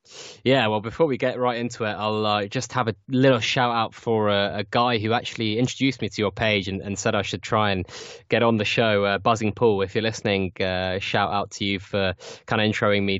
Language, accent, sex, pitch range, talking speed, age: English, British, male, 100-120 Hz, 245 wpm, 20-39